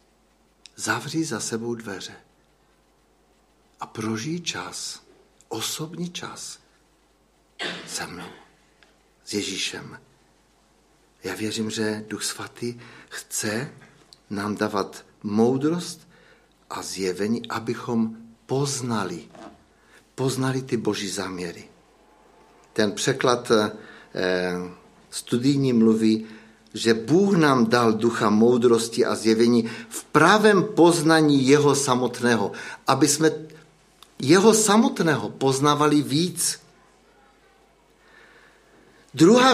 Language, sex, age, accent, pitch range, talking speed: Czech, male, 60-79, native, 110-160 Hz, 80 wpm